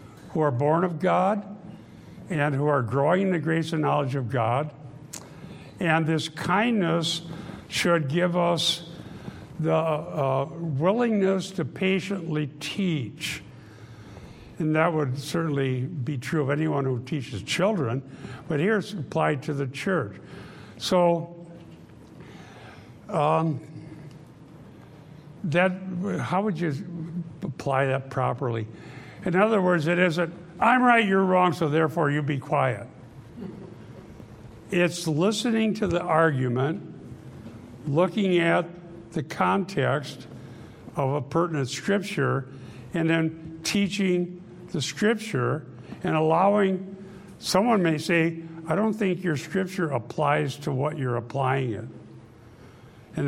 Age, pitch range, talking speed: 60-79, 135-180 Hz, 115 wpm